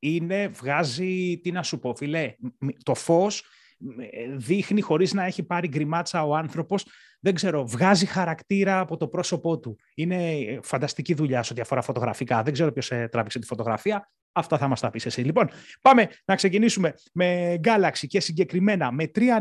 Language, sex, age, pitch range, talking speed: Greek, male, 30-49, 140-185 Hz, 165 wpm